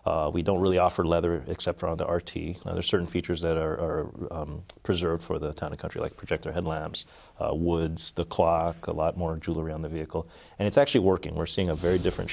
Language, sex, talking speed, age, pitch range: English, male, 235 wpm, 30-49, 80-95 Hz